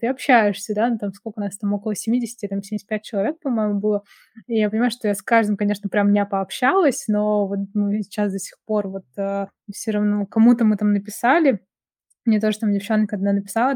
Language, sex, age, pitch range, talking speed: Russian, female, 20-39, 205-235 Hz, 205 wpm